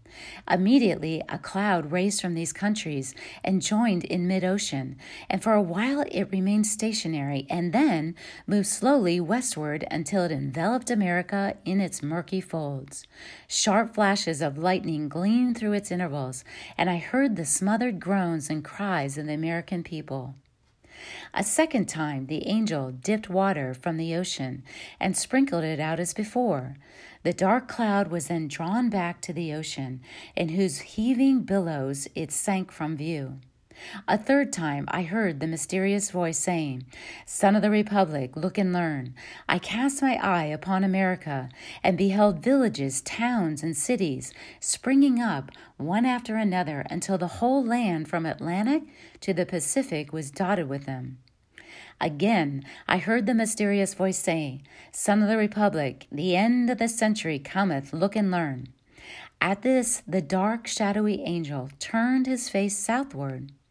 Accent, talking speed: American, 150 wpm